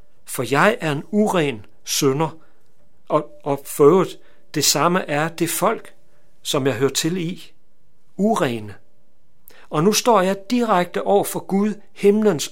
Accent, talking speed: native, 140 wpm